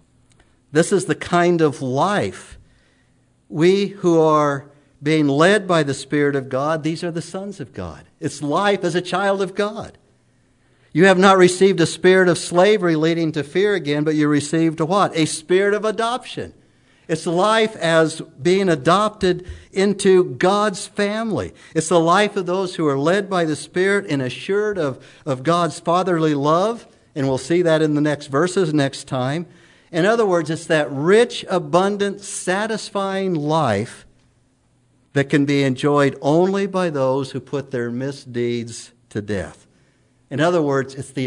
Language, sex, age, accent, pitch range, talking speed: English, male, 60-79, American, 125-175 Hz, 165 wpm